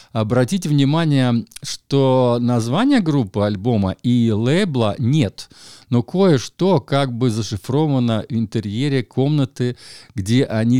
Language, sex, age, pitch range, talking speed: Russian, male, 50-69, 110-135 Hz, 105 wpm